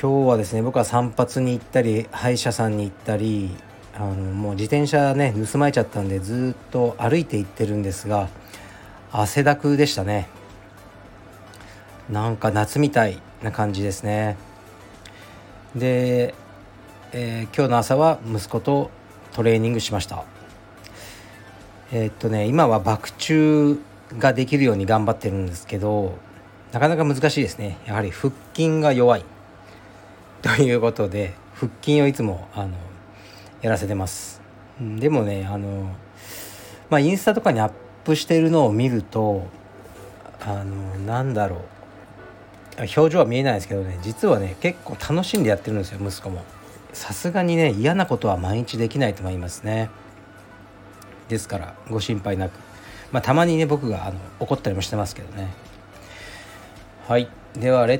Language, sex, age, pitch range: Japanese, male, 40-59, 100-120 Hz